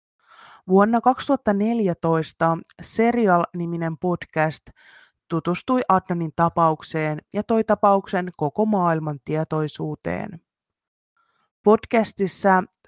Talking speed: 65 wpm